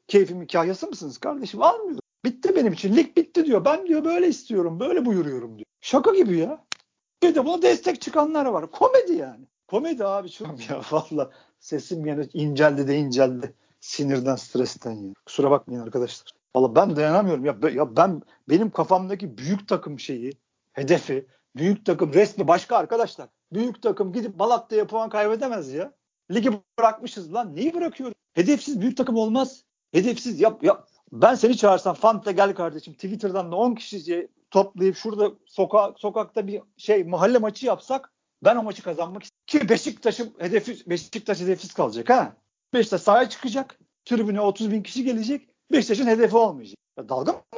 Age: 50-69